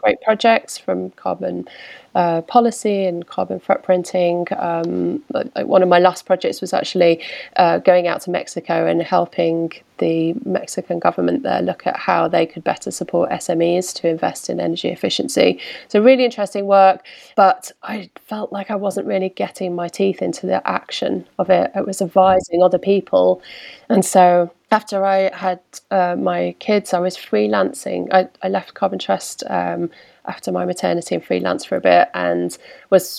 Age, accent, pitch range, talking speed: 20-39, British, 170-195 Hz, 165 wpm